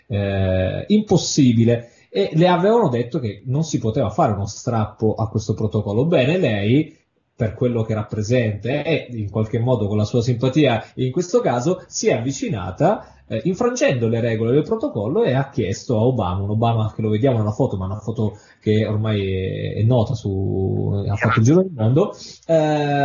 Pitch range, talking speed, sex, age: 110-155 Hz, 185 wpm, male, 20-39